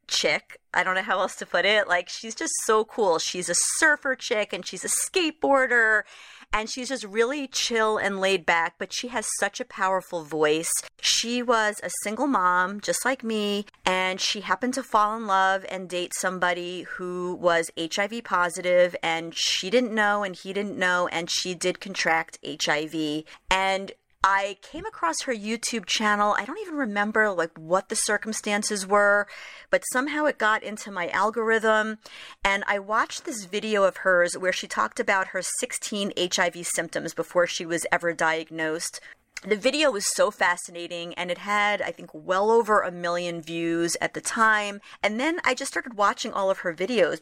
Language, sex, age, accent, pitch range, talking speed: English, female, 40-59, American, 180-225 Hz, 180 wpm